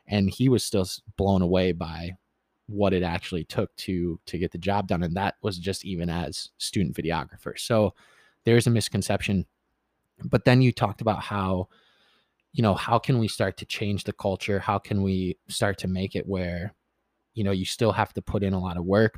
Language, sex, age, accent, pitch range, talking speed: English, male, 20-39, American, 90-110 Hz, 205 wpm